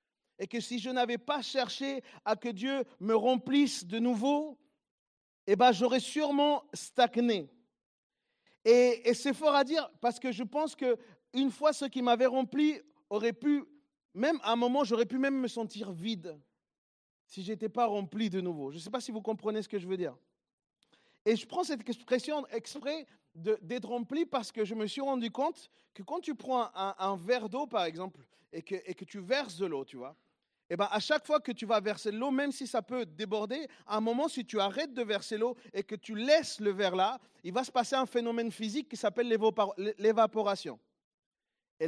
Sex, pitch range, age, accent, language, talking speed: male, 215-285 Hz, 40-59, French, French, 210 wpm